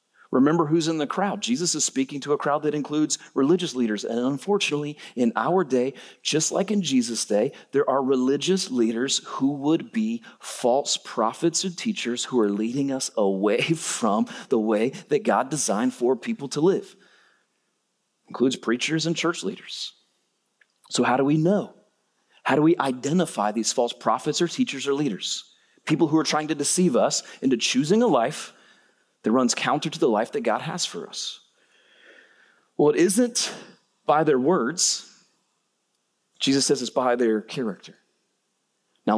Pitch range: 130-180 Hz